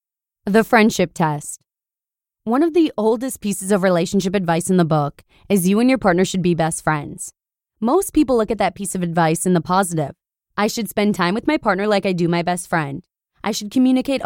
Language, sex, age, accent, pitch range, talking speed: English, female, 20-39, American, 175-235 Hz, 210 wpm